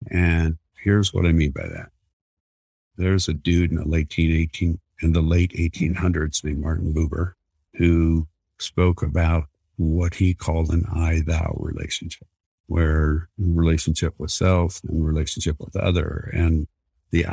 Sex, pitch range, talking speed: male, 75-95 Hz, 140 wpm